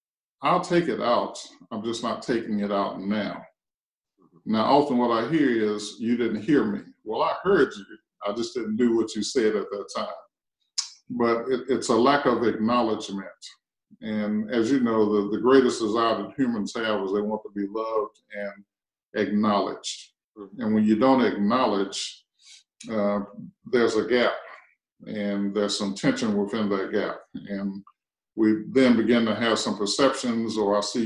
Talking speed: 170 wpm